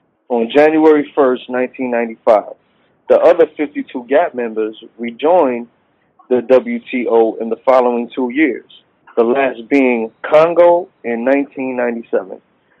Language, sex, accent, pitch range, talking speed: English, male, American, 115-155 Hz, 110 wpm